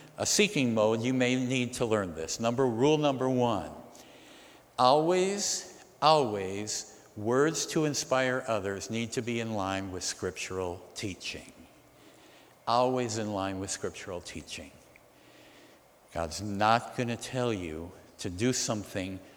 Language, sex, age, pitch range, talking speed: English, male, 60-79, 100-140 Hz, 125 wpm